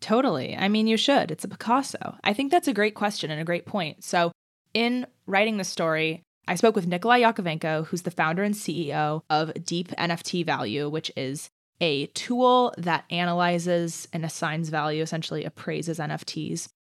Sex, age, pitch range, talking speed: female, 20-39, 160-190 Hz, 175 wpm